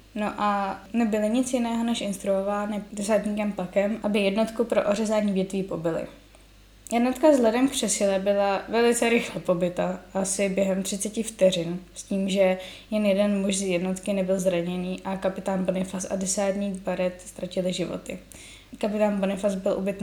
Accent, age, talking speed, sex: native, 10-29, 150 wpm, female